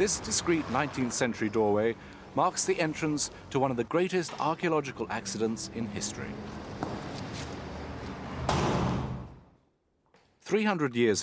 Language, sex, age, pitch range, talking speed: Italian, male, 40-59, 110-160 Hz, 95 wpm